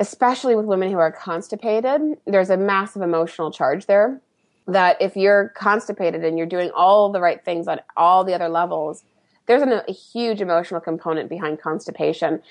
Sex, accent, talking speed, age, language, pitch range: female, American, 170 wpm, 30-49, English, 160-195 Hz